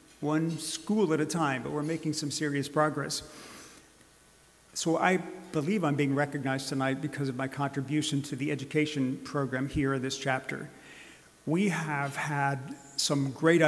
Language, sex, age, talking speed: English, male, 50-69, 155 wpm